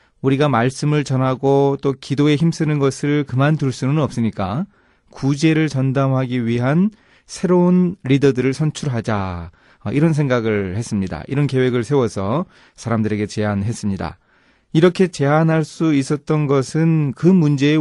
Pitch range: 115-155 Hz